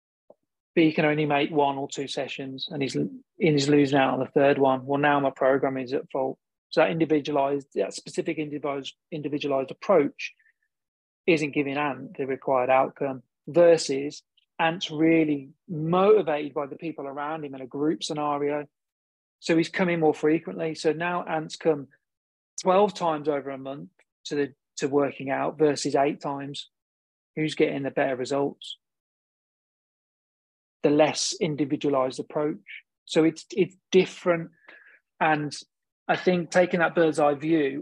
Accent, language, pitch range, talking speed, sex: British, English, 135-155 Hz, 150 wpm, male